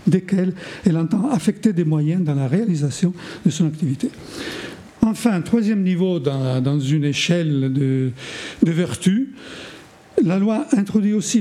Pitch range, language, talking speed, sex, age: 155-200 Hz, French, 130 wpm, male, 50-69